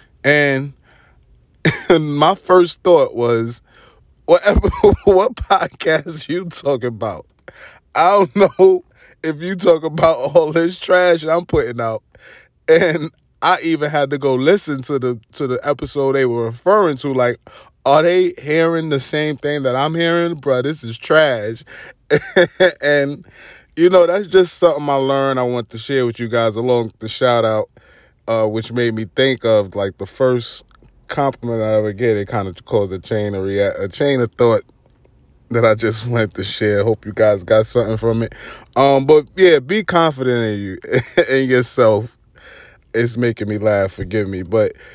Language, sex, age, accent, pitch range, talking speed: English, male, 20-39, American, 115-155 Hz, 170 wpm